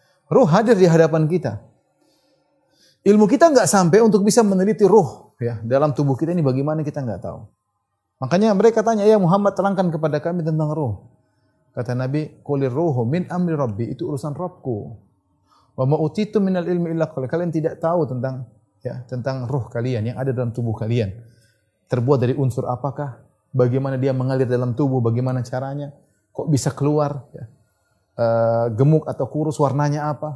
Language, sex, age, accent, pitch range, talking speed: Indonesian, male, 30-49, native, 125-180 Hz, 160 wpm